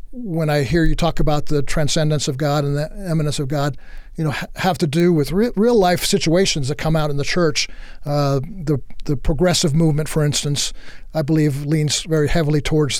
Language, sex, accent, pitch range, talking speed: English, male, American, 145-165 Hz, 200 wpm